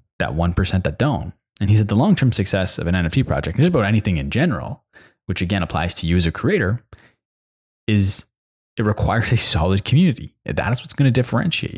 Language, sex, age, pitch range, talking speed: English, male, 20-39, 95-130 Hz, 195 wpm